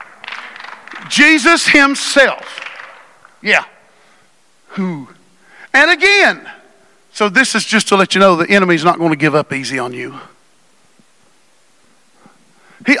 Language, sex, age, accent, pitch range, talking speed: English, male, 50-69, American, 195-280 Hz, 115 wpm